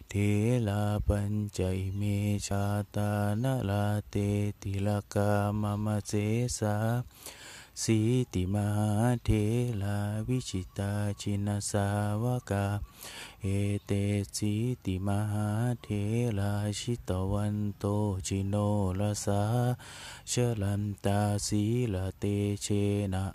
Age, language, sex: 20-39, Thai, male